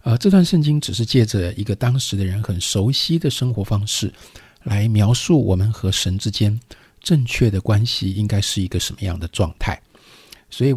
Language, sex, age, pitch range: Chinese, male, 50-69, 95-125 Hz